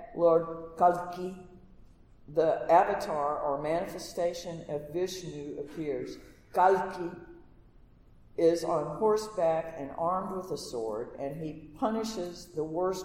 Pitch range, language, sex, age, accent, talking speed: 155-195 Hz, English, female, 50-69, American, 105 wpm